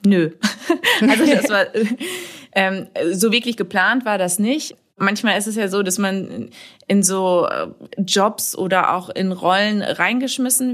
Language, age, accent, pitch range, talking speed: German, 20-39, German, 175-210 Hz, 145 wpm